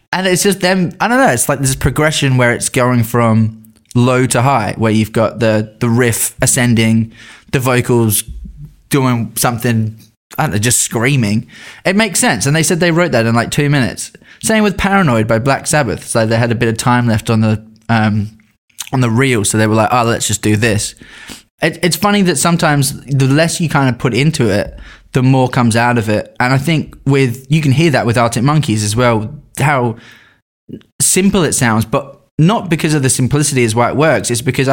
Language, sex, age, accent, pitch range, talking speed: English, male, 20-39, British, 110-140 Hz, 215 wpm